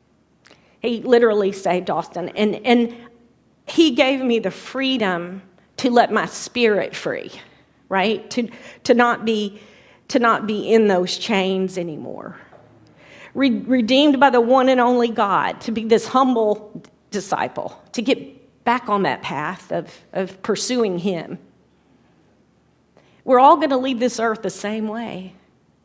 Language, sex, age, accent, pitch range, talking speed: English, female, 40-59, American, 190-245 Hz, 140 wpm